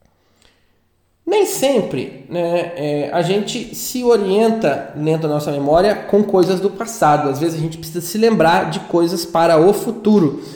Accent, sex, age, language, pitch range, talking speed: Brazilian, male, 20-39, Portuguese, 155-220 Hz, 155 wpm